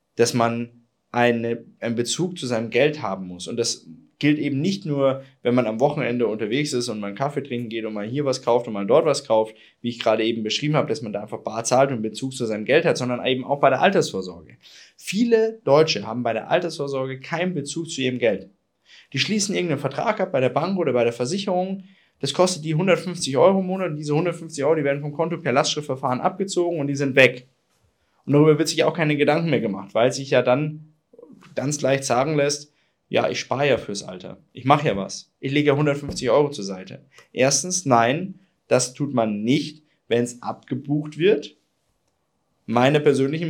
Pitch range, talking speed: 120-155 Hz, 210 wpm